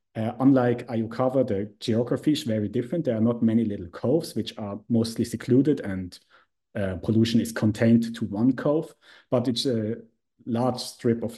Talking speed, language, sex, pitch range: 170 wpm, English, male, 110-130 Hz